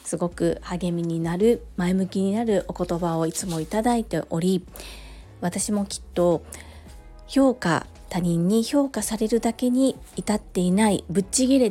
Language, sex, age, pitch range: Japanese, female, 40-59, 170-250 Hz